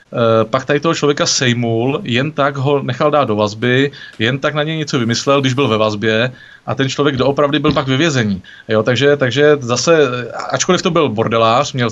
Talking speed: 190 wpm